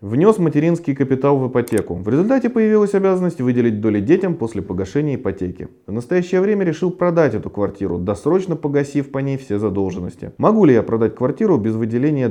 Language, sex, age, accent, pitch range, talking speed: Russian, male, 30-49, native, 100-150 Hz, 170 wpm